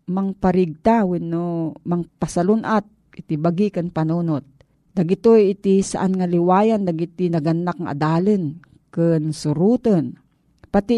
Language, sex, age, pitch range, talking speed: Filipino, female, 40-59, 160-200 Hz, 100 wpm